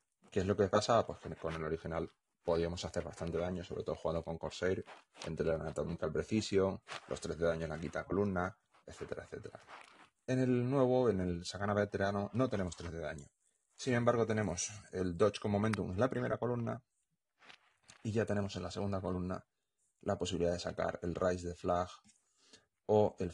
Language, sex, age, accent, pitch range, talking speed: Spanish, male, 30-49, Spanish, 85-105 Hz, 190 wpm